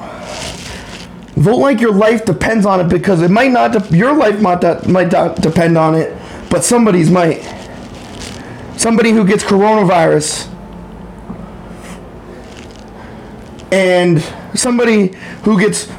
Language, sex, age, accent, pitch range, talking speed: English, male, 30-49, American, 175-225 Hz, 120 wpm